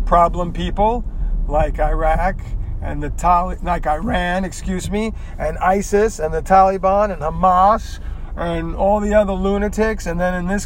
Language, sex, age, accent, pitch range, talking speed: English, male, 40-59, American, 150-200 Hz, 150 wpm